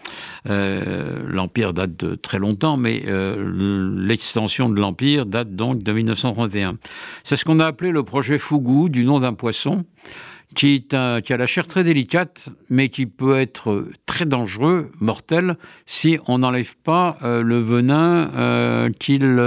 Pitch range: 115-145 Hz